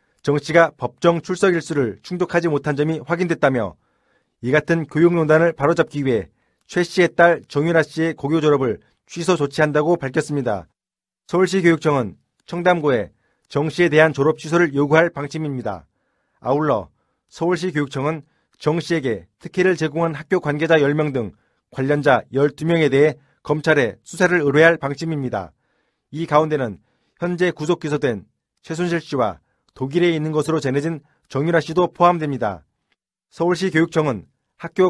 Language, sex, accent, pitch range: Korean, male, native, 145-170 Hz